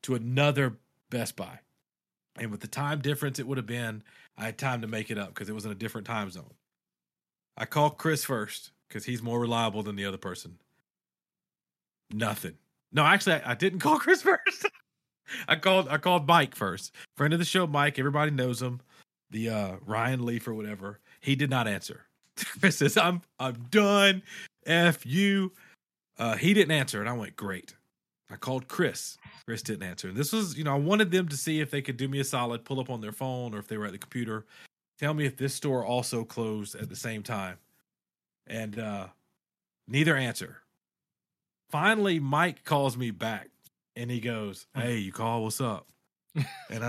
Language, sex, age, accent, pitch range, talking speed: English, male, 40-59, American, 115-170 Hz, 195 wpm